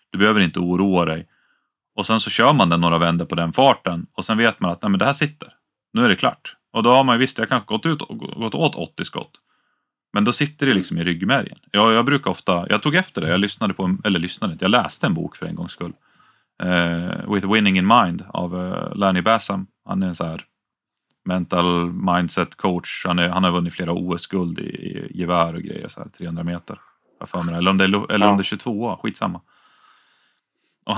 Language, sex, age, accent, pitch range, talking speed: Swedish, male, 30-49, native, 85-110 Hz, 225 wpm